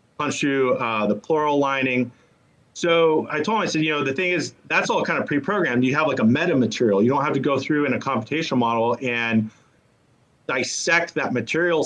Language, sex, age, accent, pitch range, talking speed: English, male, 30-49, American, 115-145 Hz, 200 wpm